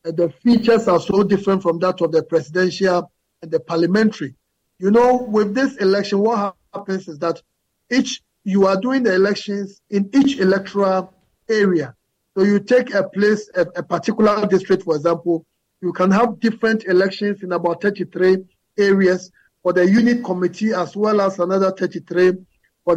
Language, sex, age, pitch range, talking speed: English, male, 50-69, 175-205 Hz, 165 wpm